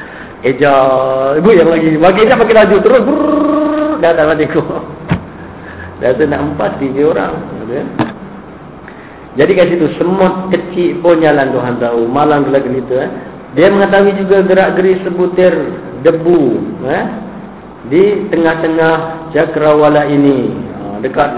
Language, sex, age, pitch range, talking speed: Malay, male, 50-69, 135-170 Hz, 120 wpm